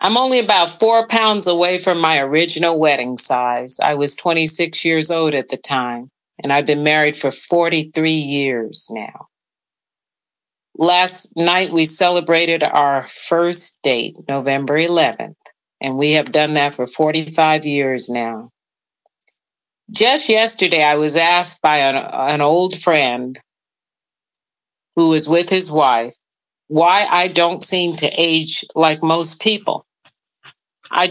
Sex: female